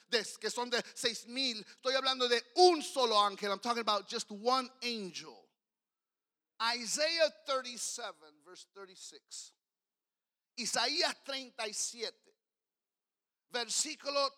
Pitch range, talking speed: 210-270 Hz, 60 wpm